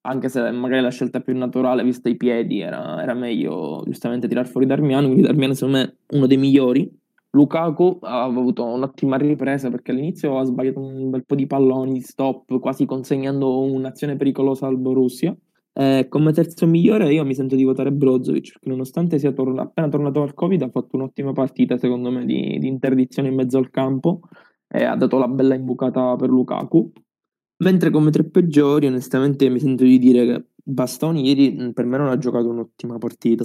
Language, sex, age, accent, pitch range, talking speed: Italian, male, 20-39, native, 125-135 Hz, 185 wpm